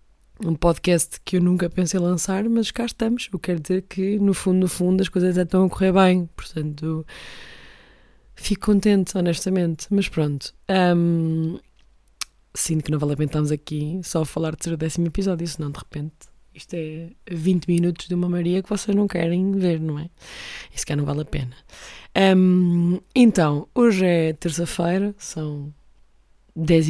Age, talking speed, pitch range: 20-39, 175 wpm, 160-190 Hz